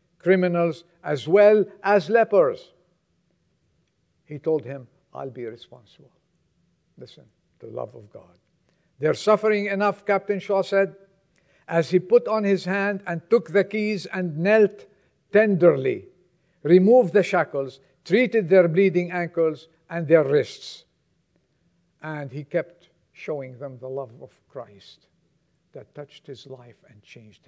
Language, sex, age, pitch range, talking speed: English, male, 60-79, 160-200 Hz, 130 wpm